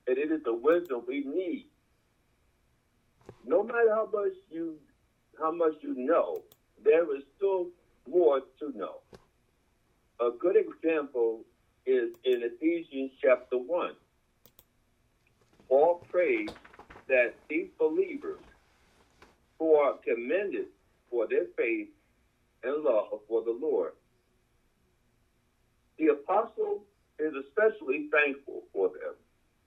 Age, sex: 60-79, male